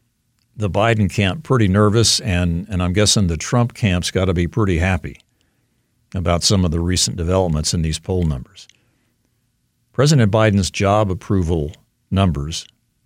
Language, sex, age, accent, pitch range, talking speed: English, male, 50-69, American, 90-120 Hz, 140 wpm